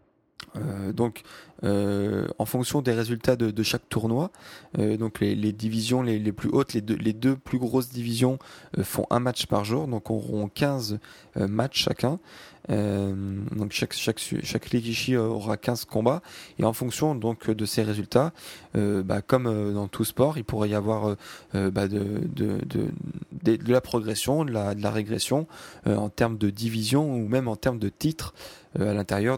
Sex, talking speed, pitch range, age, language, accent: male, 195 wpm, 105-125 Hz, 20-39, French, French